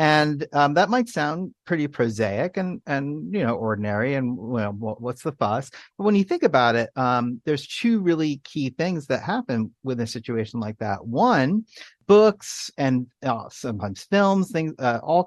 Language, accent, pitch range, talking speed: English, American, 120-175 Hz, 175 wpm